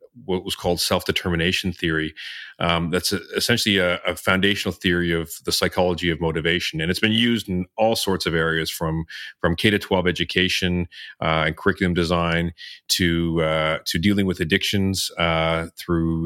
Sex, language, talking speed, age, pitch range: male, English, 165 wpm, 30-49, 85-100 Hz